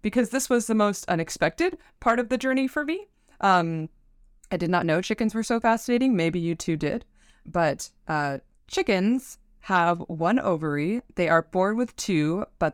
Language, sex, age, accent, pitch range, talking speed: English, female, 20-39, American, 155-195 Hz, 175 wpm